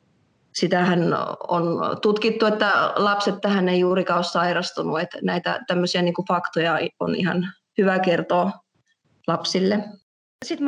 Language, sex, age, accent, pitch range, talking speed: Finnish, female, 30-49, native, 175-215 Hz, 120 wpm